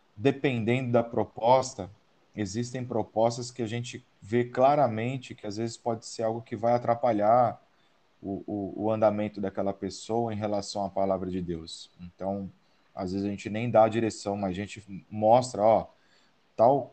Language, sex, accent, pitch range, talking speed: Portuguese, male, Brazilian, 100-115 Hz, 165 wpm